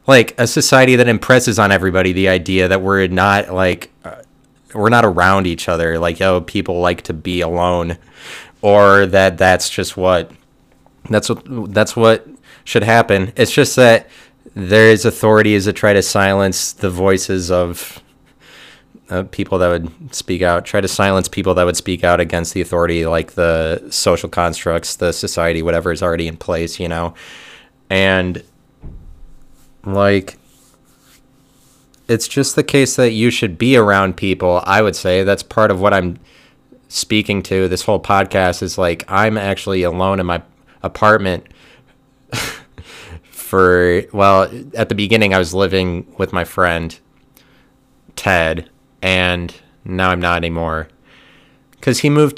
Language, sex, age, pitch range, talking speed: English, male, 30-49, 90-110 Hz, 150 wpm